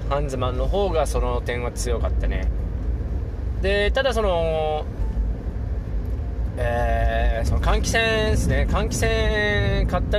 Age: 20-39